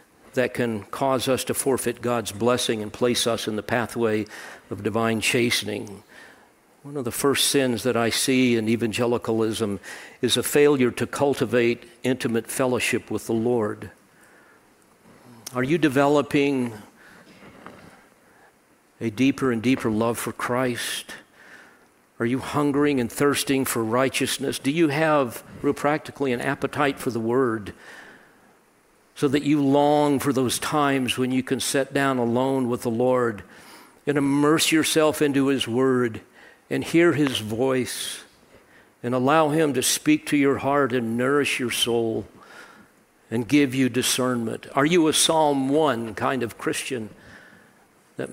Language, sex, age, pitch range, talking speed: English, male, 50-69, 115-140 Hz, 145 wpm